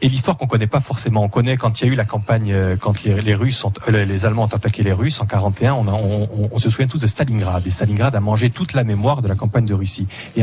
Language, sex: French, male